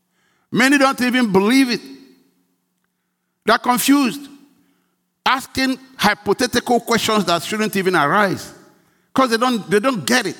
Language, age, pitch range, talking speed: English, 60-79, 155-220 Hz, 115 wpm